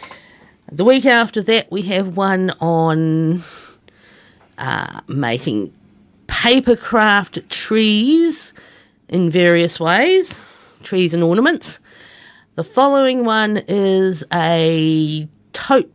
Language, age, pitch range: English, 50-69, 165-230 Hz